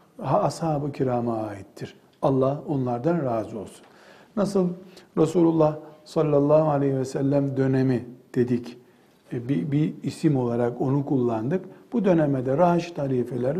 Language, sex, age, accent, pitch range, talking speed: Turkish, male, 60-79, native, 130-170 Hz, 115 wpm